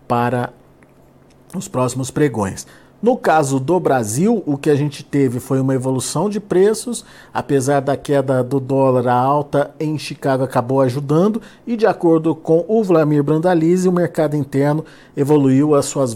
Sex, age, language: male, 50-69, Portuguese